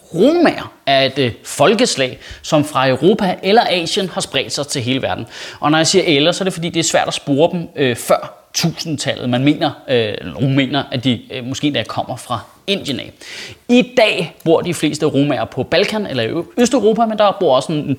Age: 30-49